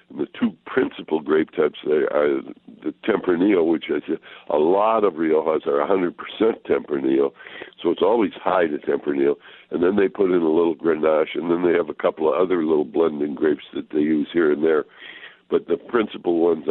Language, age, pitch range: English, 60-79, 305-435 Hz